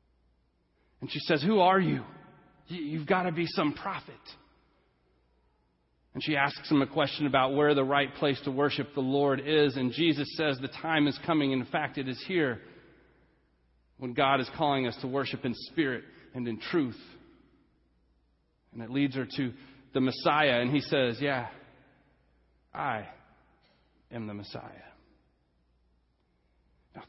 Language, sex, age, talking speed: English, male, 40-59, 150 wpm